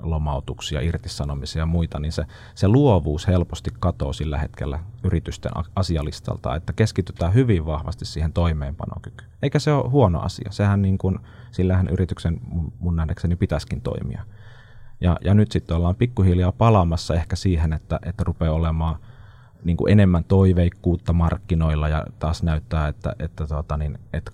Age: 30-49